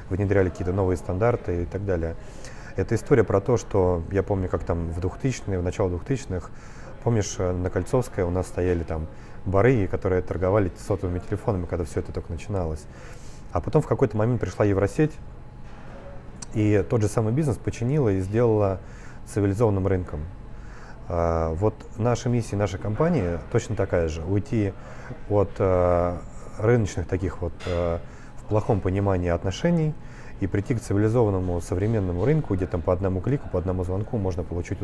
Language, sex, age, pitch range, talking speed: Russian, male, 30-49, 90-110 Hz, 150 wpm